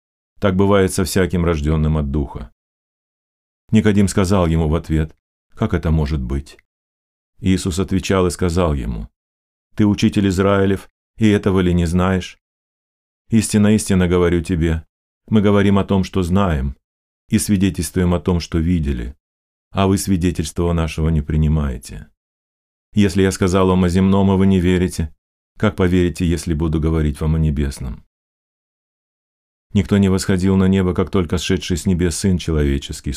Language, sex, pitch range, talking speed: Russian, male, 75-95 Hz, 145 wpm